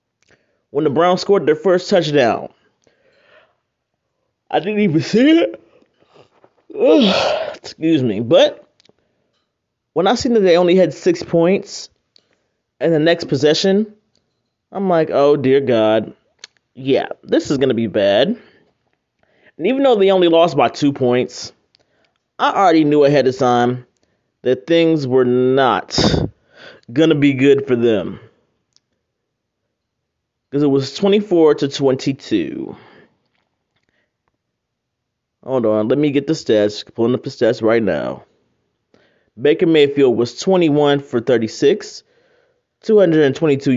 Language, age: English, 20-39